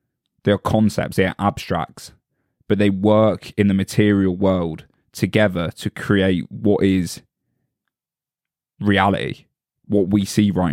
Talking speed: 130 wpm